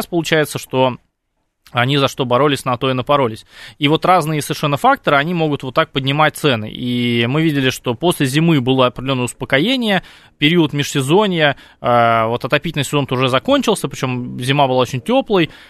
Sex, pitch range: male, 125-165 Hz